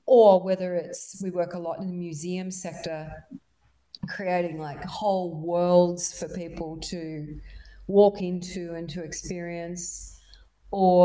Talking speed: 130 wpm